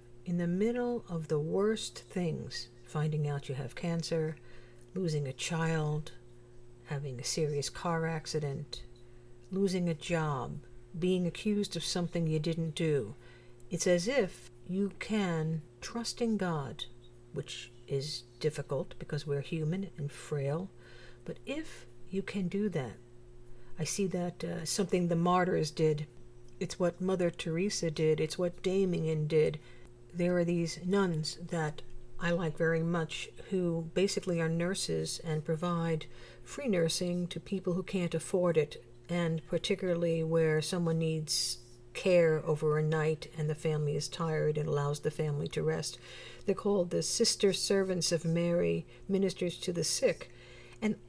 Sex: female